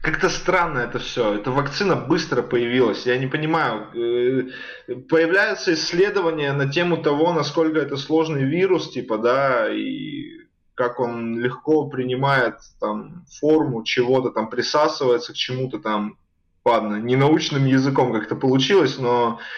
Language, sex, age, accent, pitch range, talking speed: Russian, male, 20-39, native, 125-165 Hz, 125 wpm